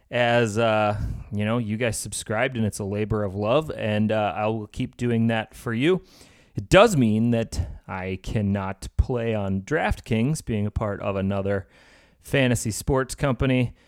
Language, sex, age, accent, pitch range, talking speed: English, male, 30-49, American, 110-140 Hz, 165 wpm